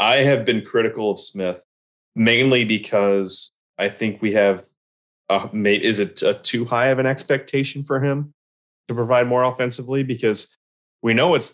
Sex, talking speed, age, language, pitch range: male, 165 wpm, 30-49, English, 95-120 Hz